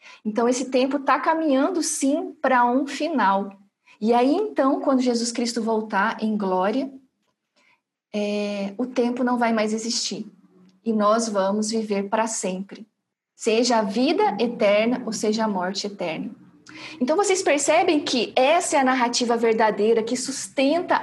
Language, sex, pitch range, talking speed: Portuguese, female, 225-275 Hz, 145 wpm